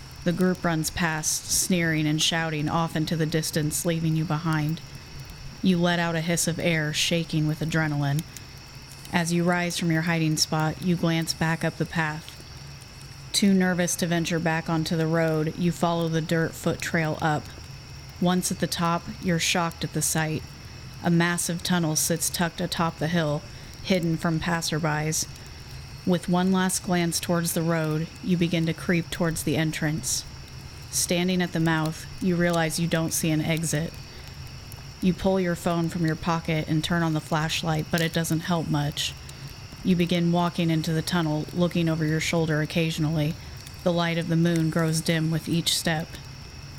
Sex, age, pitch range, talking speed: female, 30-49, 155-170 Hz, 175 wpm